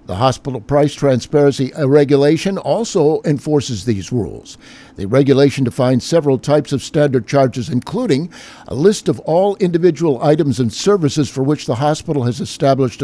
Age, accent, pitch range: 50-69, American, 130-160 Hz